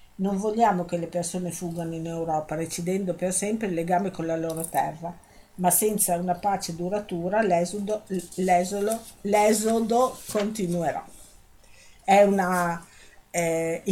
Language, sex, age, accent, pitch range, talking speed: Italian, female, 50-69, native, 170-210 Hz, 125 wpm